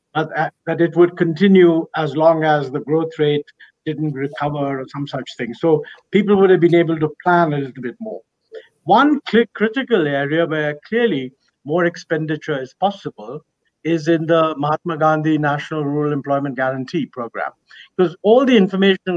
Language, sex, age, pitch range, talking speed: English, male, 50-69, 150-195 Hz, 160 wpm